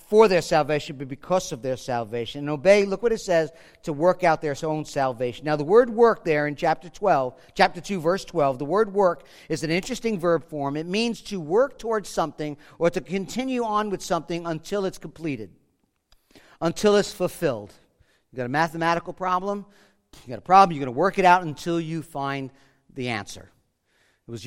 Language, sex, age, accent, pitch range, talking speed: English, male, 50-69, American, 145-190 Hz, 195 wpm